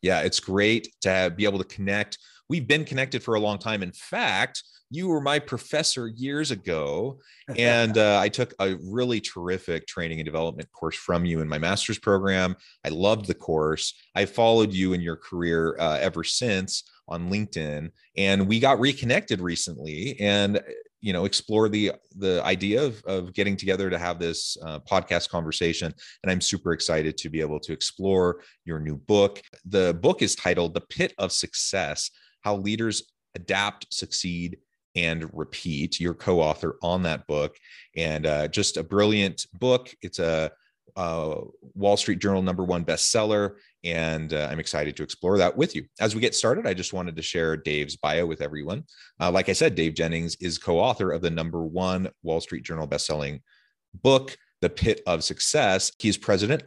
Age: 30-49